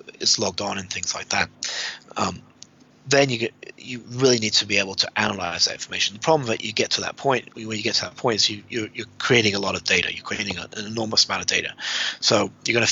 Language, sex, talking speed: English, male, 255 wpm